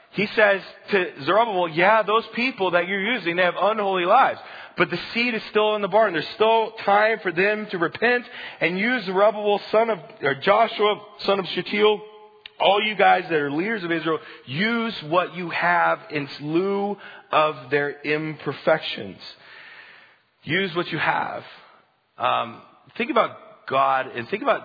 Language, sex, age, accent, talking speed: English, male, 30-49, American, 160 wpm